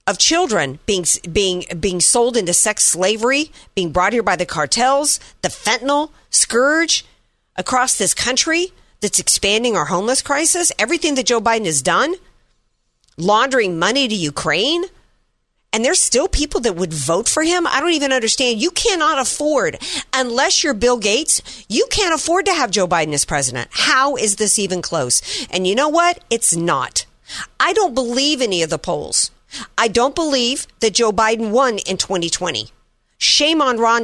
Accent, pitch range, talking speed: American, 180-265 Hz, 165 wpm